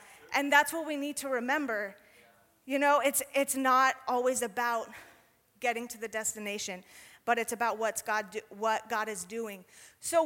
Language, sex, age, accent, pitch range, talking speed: English, female, 30-49, American, 220-265 Hz, 170 wpm